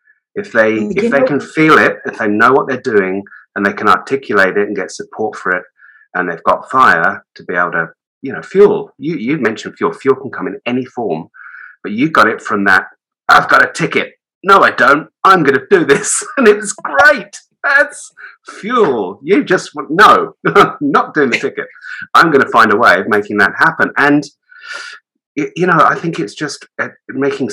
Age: 30-49